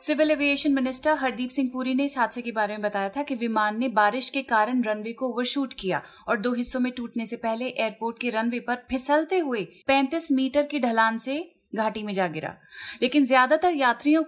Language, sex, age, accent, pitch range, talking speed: Hindi, female, 30-49, native, 220-270 Hz, 205 wpm